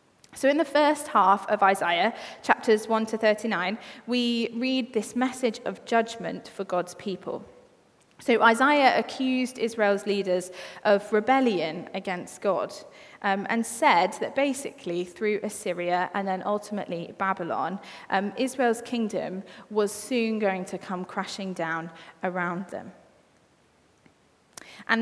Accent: British